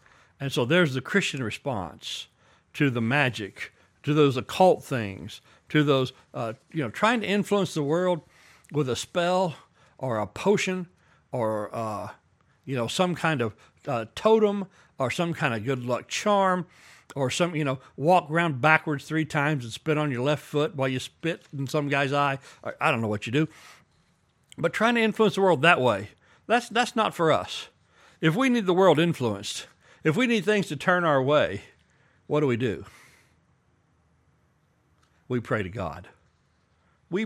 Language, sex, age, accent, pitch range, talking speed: English, male, 60-79, American, 120-170 Hz, 175 wpm